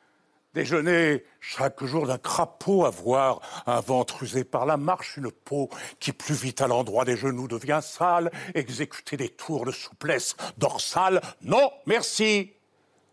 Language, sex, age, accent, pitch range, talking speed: French, male, 60-79, French, 160-235 Hz, 140 wpm